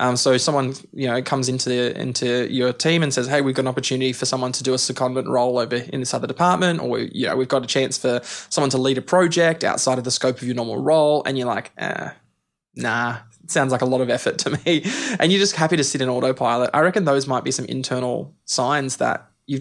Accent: Australian